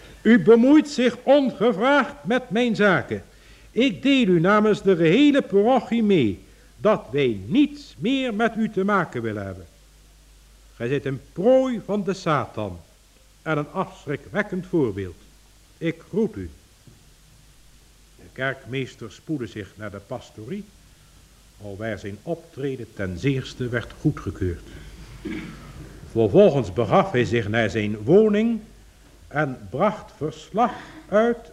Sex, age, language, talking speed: male, 60-79, Dutch, 125 wpm